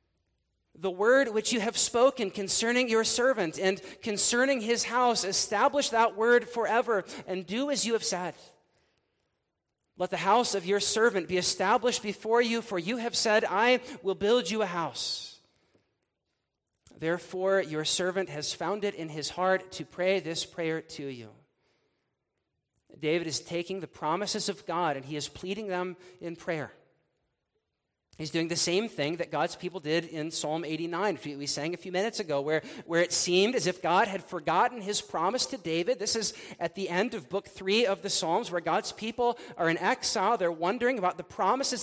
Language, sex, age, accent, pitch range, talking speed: English, male, 40-59, American, 170-225 Hz, 180 wpm